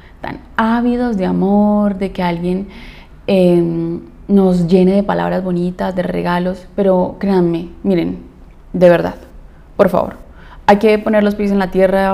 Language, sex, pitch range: Spanish, female, 170-220 Hz